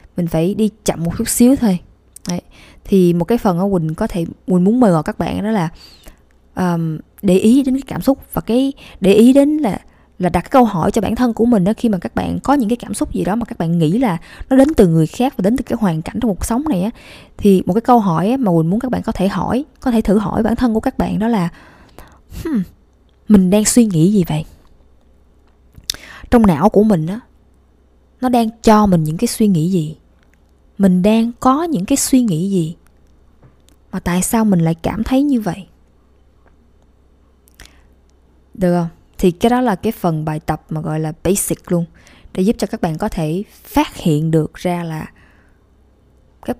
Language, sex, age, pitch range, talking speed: Vietnamese, female, 20-39, 160-225 Hz, 220 wpm